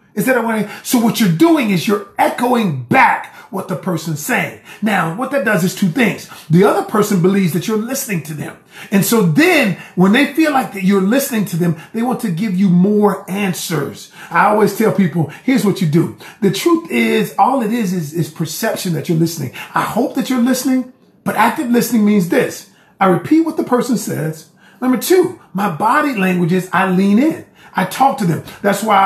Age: 40-59